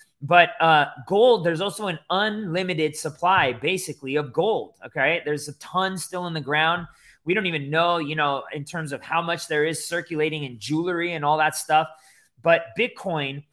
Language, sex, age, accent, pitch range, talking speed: English, male, 20-39, American, 150-185 Hz, 180 wpm